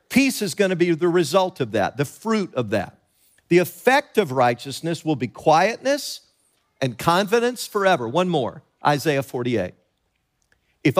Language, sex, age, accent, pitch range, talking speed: English, male, 50-69, American, 140-205 Hz, 145 wpm